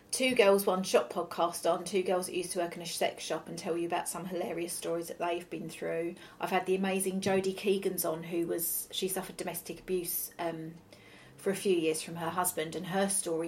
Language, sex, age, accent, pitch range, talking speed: English, female, 40-59, British, 170-215 Hz, 225 wpm